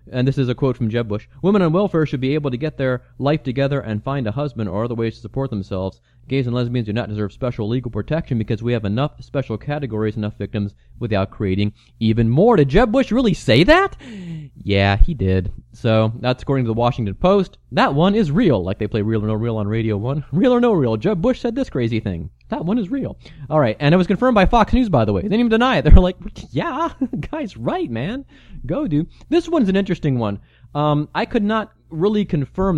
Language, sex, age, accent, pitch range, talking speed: English, male, 30-49, American, 115-160 Hz, 240 wpm